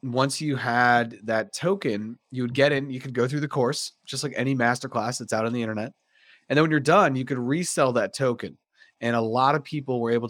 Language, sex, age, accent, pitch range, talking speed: English, male, 30-49, American, 115-140 Hz, 245 wpm